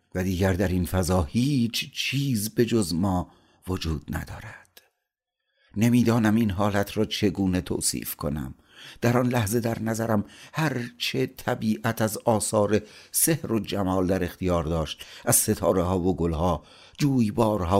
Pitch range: 80-105 Hz